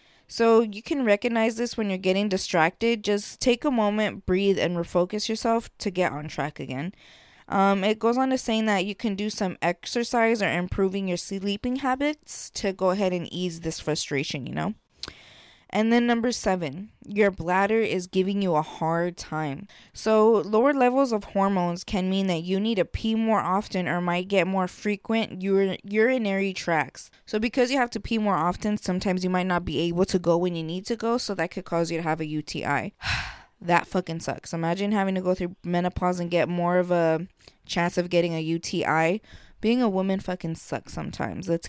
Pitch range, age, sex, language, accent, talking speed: 175-230 Hz, 20-39, female, English, American, 195 wpm